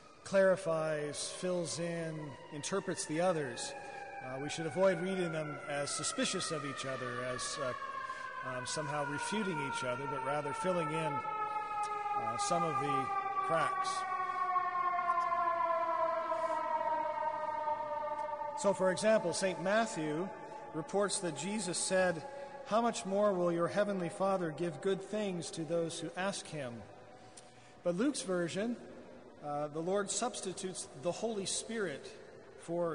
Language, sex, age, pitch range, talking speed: English, male, 40-59, 165-235 Hz, 125 wpm